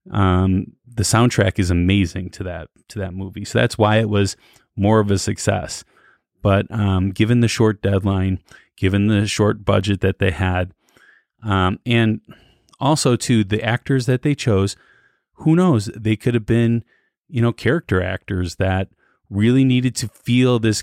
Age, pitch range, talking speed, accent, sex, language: 30-49, 95-120 Hz, 165 wpm, American, male, English